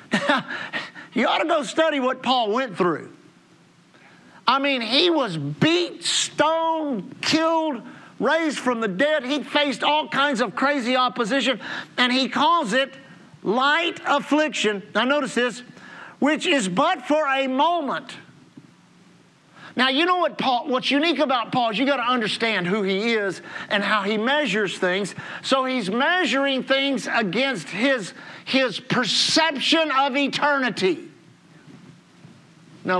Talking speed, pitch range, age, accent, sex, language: 135 wpm, 235-295 Hz, 50-69, American, male, English